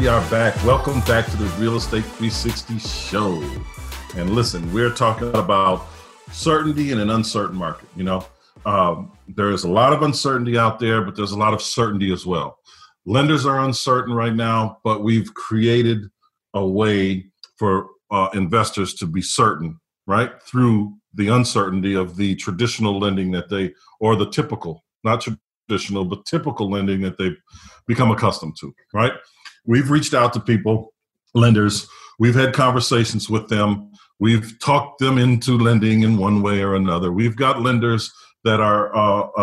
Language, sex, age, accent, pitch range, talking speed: English, male, 50-69, American, 100-120 Hz, 165 wpm